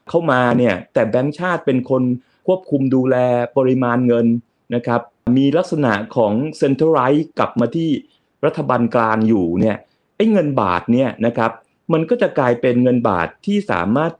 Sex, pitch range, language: male, 115-160 Hz, Thai